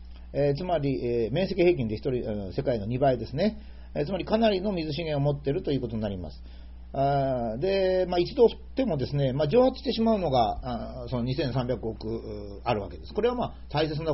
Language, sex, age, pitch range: Japanese, male, 40-59, 110-170 Hz